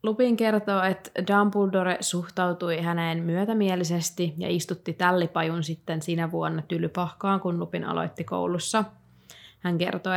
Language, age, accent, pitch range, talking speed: Finnish, 20-39, native, 160-190 Hz, 120 wpm